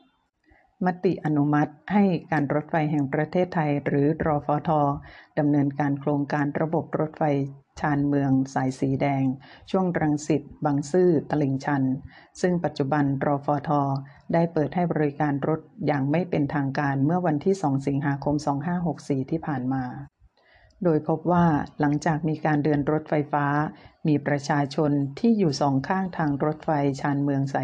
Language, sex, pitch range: Thai, female, 140-160 Hz